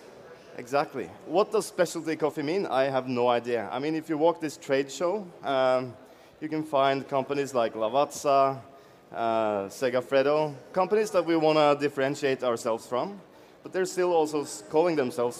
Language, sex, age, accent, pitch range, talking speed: English, male, 30-49, Norwegian, 125-165 Hz, 160 wpm